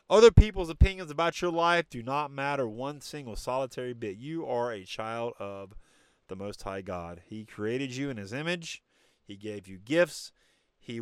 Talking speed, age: 180 wpm, 30-49